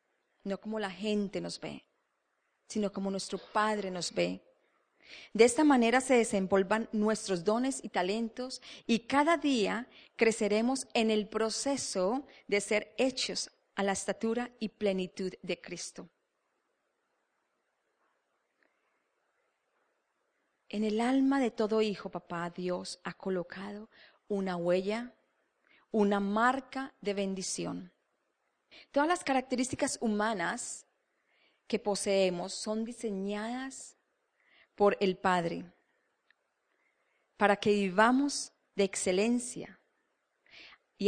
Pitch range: 195-245 Hz